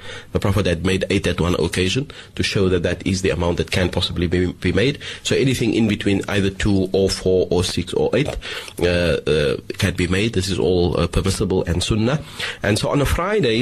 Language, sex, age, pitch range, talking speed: English, male, 30-49, 90-110 Hz, 220 wpm